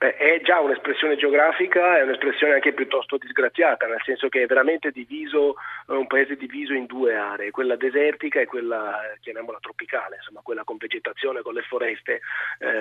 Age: 30-49